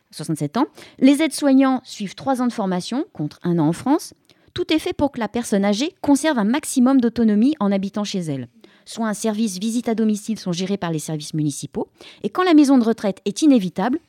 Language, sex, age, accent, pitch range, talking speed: French, female, 30-49, French, 185-255 Hz, 210 wpm